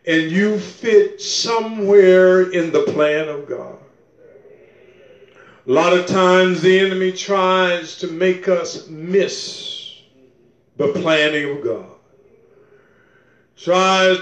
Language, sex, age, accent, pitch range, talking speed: English, male, 50-69, American, 180-210 Hz, 105 wpm